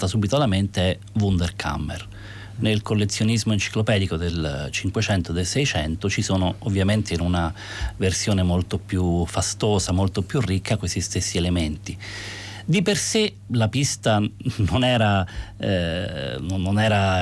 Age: 30-49